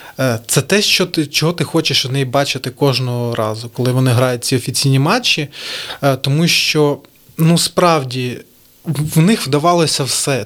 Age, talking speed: 20-39, 150 wpm